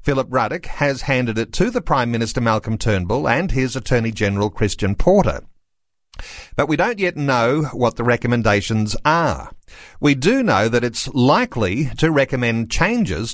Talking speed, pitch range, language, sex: 160 wpm, 115-150 Hz, English, male